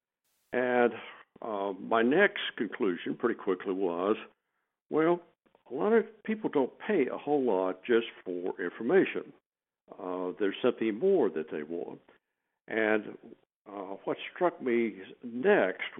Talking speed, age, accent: 130 wpm, 60-79, American